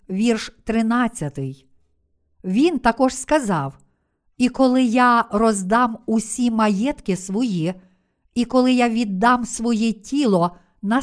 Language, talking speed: Ukrainian, 105 wpm